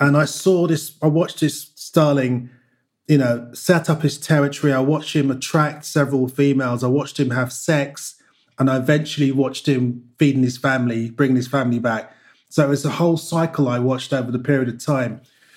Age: 30-49